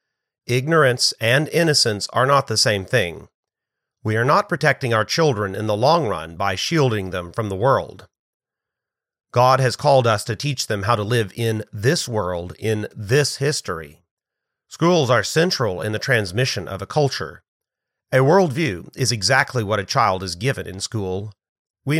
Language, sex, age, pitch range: English, male, 40-59, 105-135 Hz